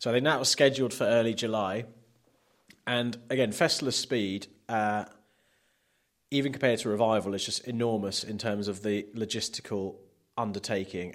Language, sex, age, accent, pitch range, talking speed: English, male, 30-49, British, 100-115 Hz, 145 wpm